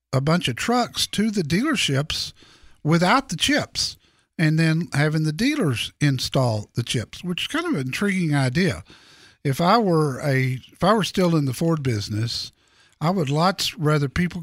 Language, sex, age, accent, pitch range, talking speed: English, male, 50-69, American, 145-195 Hz, 175 wpm